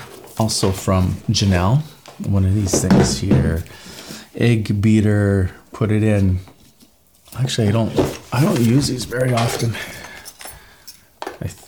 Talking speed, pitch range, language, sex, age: 120 wpm, 105-150 Hz, English, male, 40-59